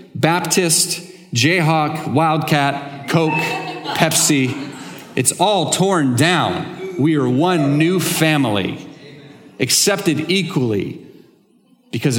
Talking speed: 85 wpm